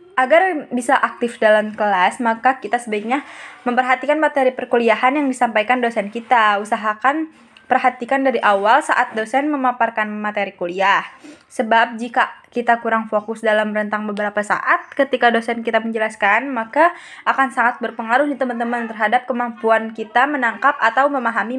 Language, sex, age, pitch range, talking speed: Indonesian, female, 10-29, 220-270 Hz, 135 wpm